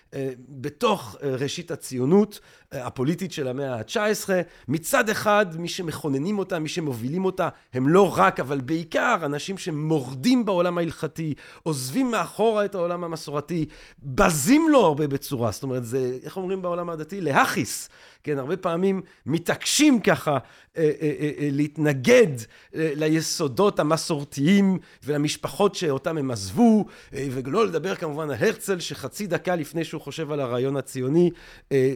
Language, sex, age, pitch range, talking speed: Hebrew, male, 40-59, 140-190 Hz, 135 wpm